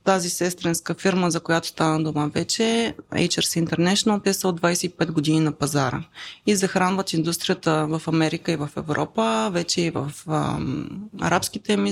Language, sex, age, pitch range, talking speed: Bulgarian, female, 20-39, 165-195 Hz, 150 wpm